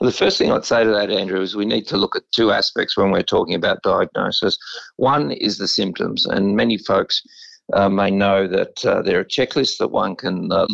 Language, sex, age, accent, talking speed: English, male, 50-69, Australian, 225 wpm